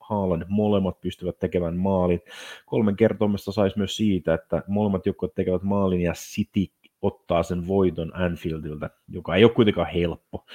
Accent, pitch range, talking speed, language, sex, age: native, 85-105 Hz, 150 wpm, Finnish, male, 30-49